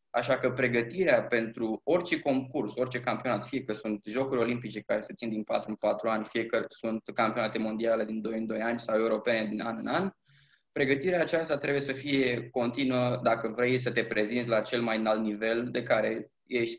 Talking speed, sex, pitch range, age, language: 200 wpm, male, 110-130 Hz, 20-39, Romanian